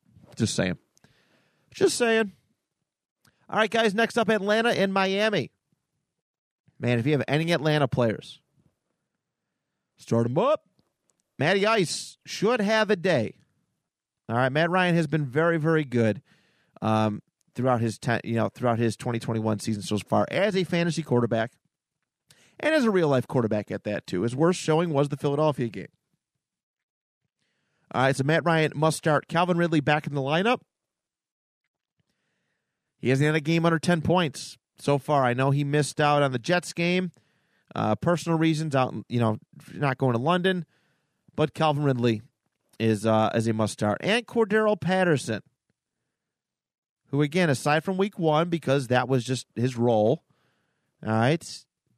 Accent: American